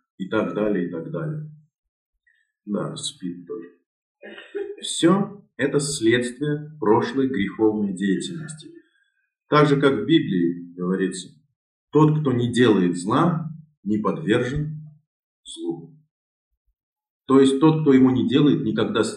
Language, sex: Russian, male